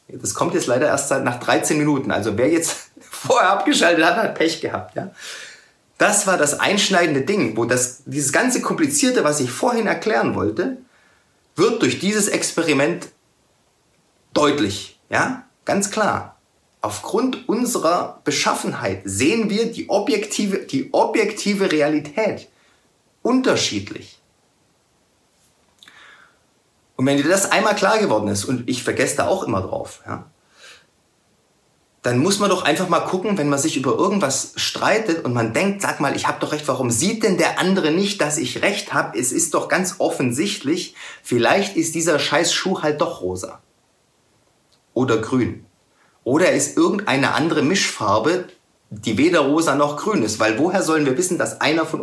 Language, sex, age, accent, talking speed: German, male, 30-49, German, 155 wpm